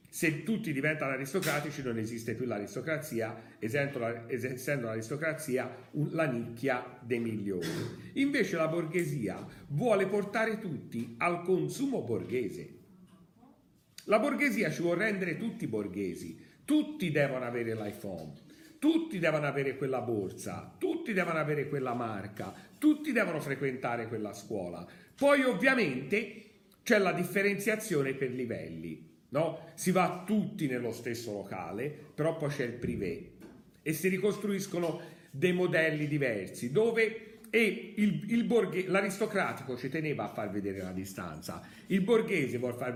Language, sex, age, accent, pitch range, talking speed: Italian, male, 50-69, native, 120-200 Hz, 120 wpm